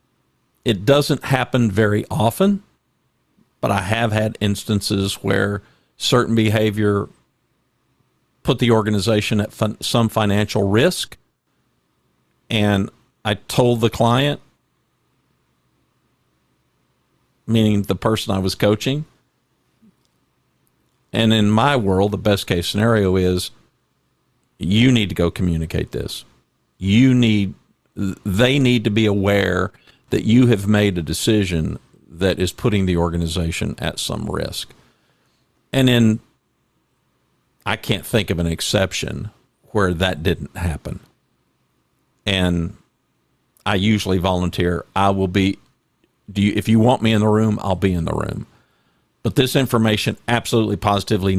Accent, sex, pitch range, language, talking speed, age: American, male, 95-115 Hz, English, 125 wpm, 50-69